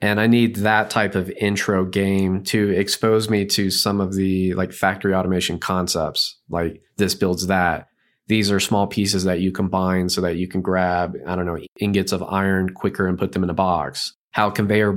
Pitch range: 95-105 Hz